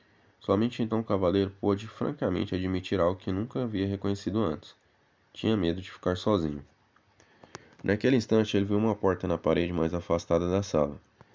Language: Portuguese